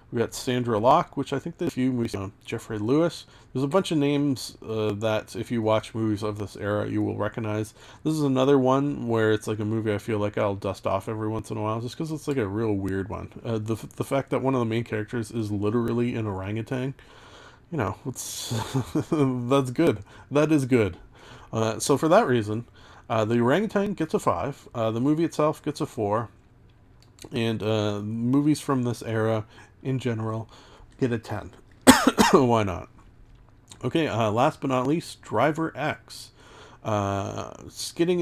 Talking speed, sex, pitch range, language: 190 wpm, male, 110-135 Hz, English